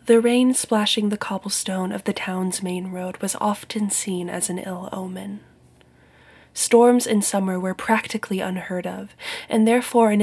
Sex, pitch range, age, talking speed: female, 185-220 Hz, 20-39, 160 wpm